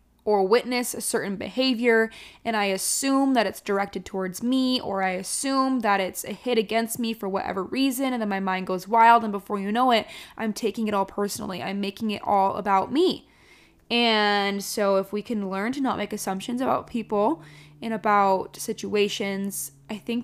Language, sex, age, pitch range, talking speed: English, female, 10-29, 200-245 Hz, 190 wpm